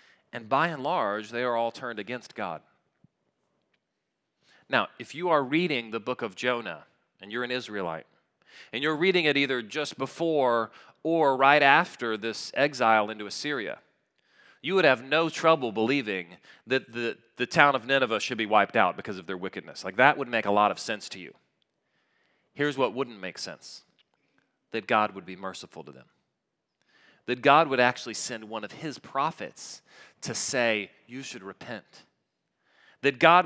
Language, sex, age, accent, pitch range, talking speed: English, male, 40-59, American, 110-140 Hz, 170 wpm